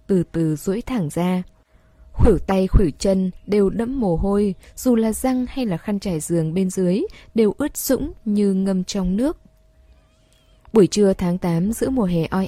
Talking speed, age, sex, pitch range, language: 185 wpm, 10-29, female, 170-210 Hz, Vietnamese